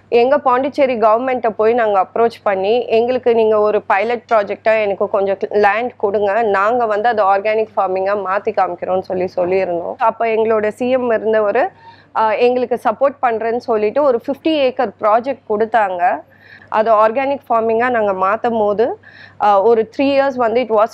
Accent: native